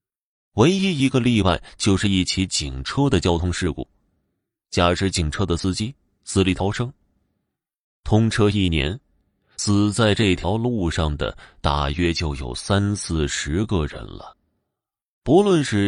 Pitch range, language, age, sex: 85-110 Hz, Chinese, 20-39, male